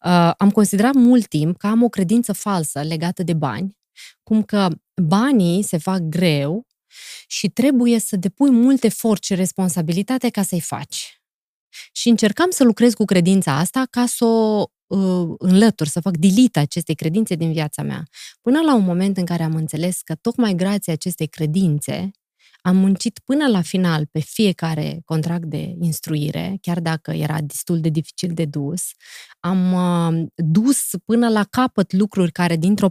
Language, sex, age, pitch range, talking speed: Romanian, female, 20-39, 165-215 Hz, 160 wpm